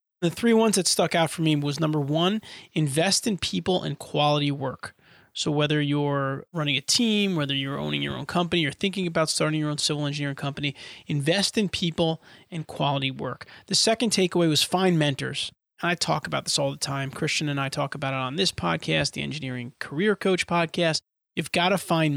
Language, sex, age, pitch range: English, male, 30-49, 145-175 Hz